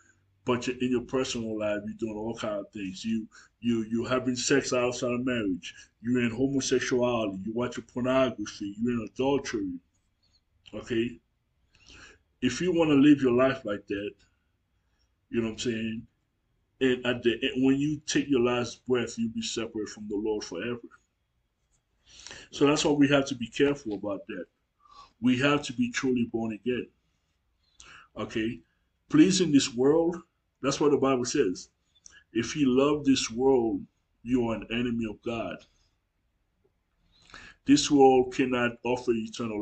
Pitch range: 105-130 Hz